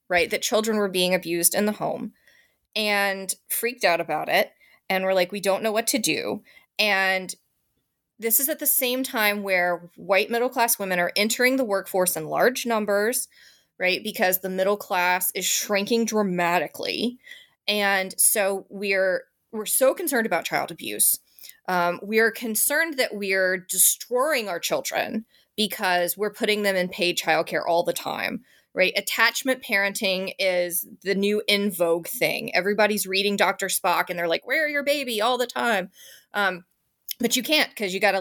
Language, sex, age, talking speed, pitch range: English, female, 20-39, 170 wpm, 185-230 Hz